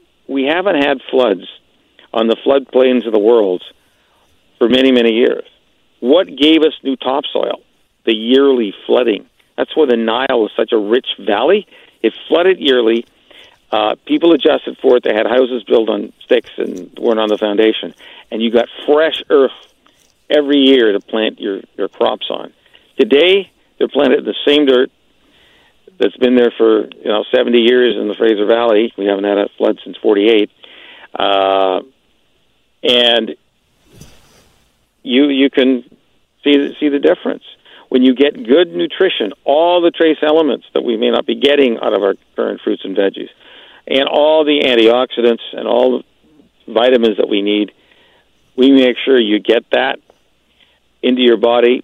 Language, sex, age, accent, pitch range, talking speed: English, male, 50-69, American, 115-145 Hz, 160 wpm